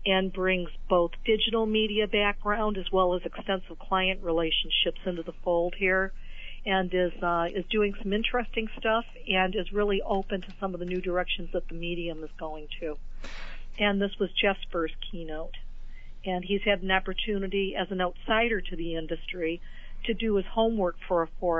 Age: 50-69